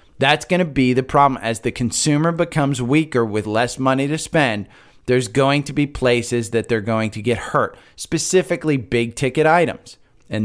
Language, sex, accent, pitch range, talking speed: English, male, American, 115-145 Hz, 185 wpm